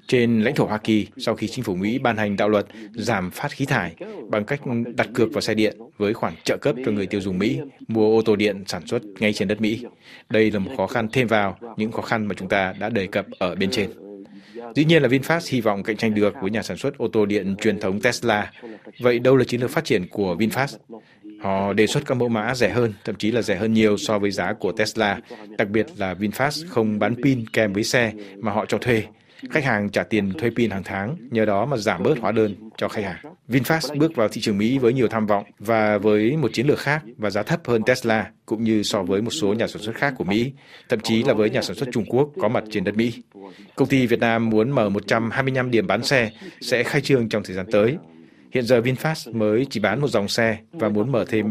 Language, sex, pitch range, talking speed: Vietnamese, male, 105-120 Hz, 255 wpm